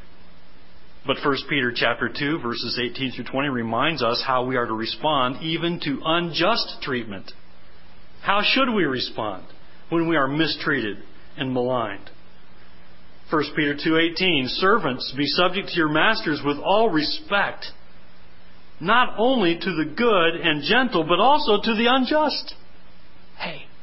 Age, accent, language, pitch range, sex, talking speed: 40-59, American, English, 125-200 Hz, male, 140 wpm